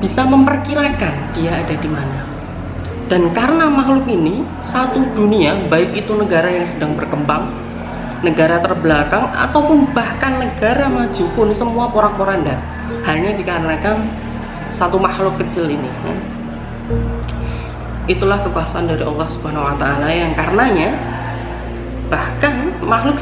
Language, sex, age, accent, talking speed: Indonesian, female, 20-39, native, 115 wpm